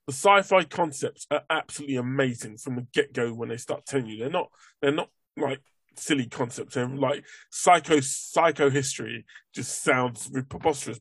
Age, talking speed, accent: 20-39, 160 wpm, British